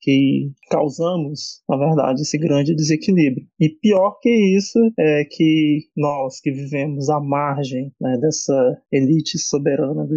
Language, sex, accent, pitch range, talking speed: Portuguese, male, Brazilian, 145-185 Hz, 135 wpm